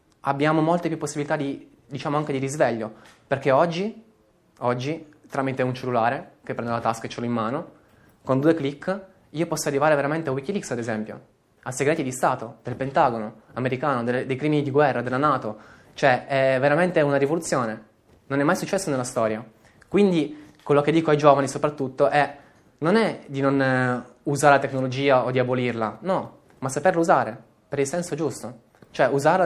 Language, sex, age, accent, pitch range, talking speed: Italian, male, 20-39, native, 125-150 Hz, 180 wpm